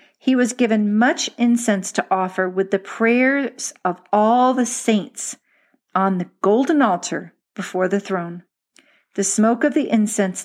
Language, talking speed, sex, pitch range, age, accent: English, 150 wpm, female, 190-230 Hz, 50-69, American